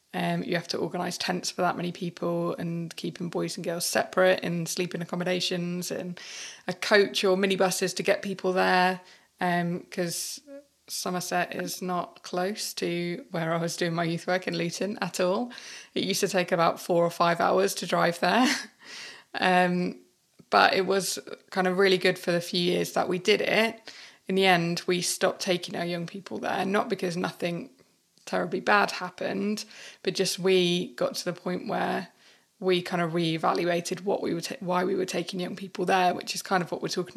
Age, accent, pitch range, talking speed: 20-39, British, 175-190 Hz, 195 wpm